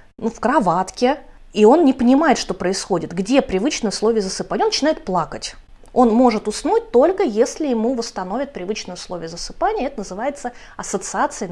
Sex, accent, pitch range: female, native, 190-265 Hz